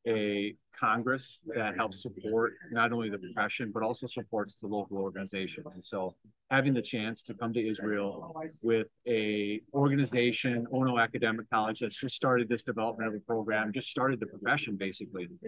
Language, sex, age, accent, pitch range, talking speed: English, male, 40-59, American, 115-135 Hz, 165 wpm